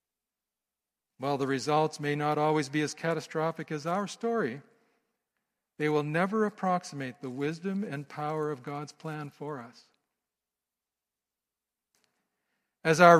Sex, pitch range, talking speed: male, 145-185 Hz, 125 wpm